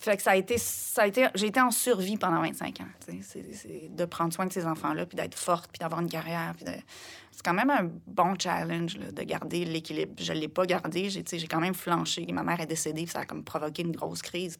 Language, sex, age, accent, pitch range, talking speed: French, female, 30-49, Canadian, 160-195 Hz, 275 wpm